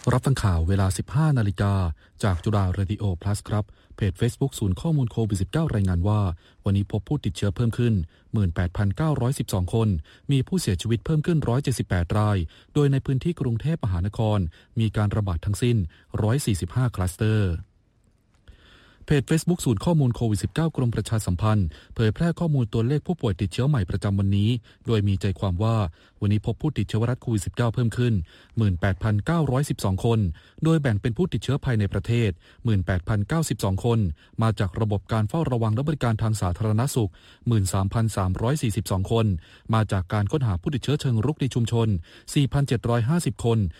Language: Thai